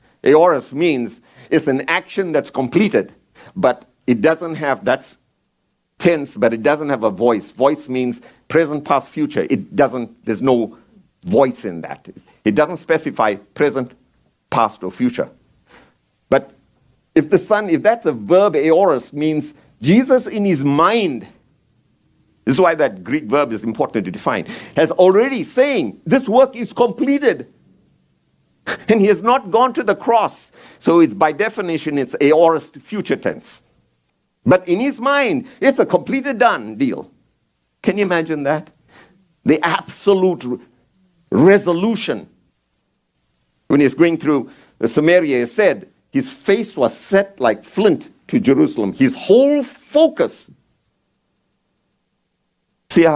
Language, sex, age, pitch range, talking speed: English, male, 50-69, 135-215 Hz, 135 wpm